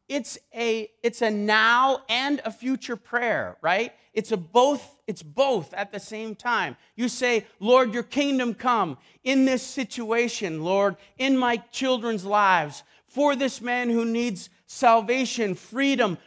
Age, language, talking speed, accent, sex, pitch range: 40-59, English, 150 wpm, American, male, 230-275 Hz